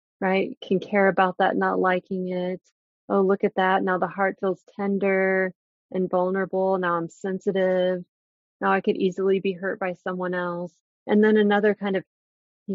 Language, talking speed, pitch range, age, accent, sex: English, 175 wpm, 175-205 Hz, 30-49, American, female